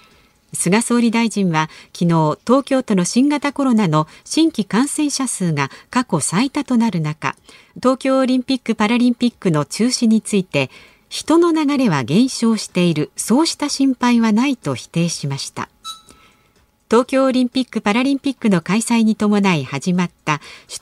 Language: Japanese